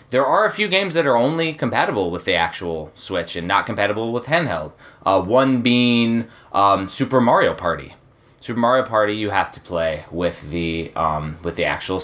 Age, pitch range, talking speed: 20-39, 90-130 Hz, 180 wpm